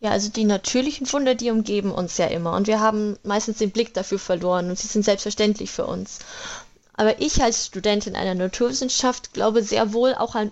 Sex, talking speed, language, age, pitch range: female, 200 wpm, German, 20-39, 195-235 Hz